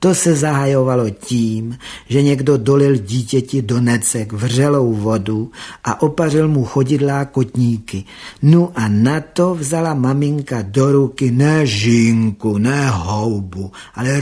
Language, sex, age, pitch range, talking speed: Czech, male, 50-69, 110-140 Hz, 125 wpm